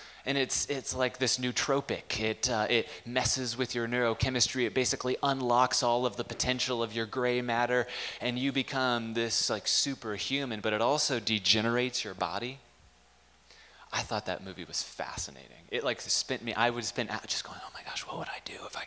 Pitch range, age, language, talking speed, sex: 110-140 Hz, 20-39, English, 190 wpm, male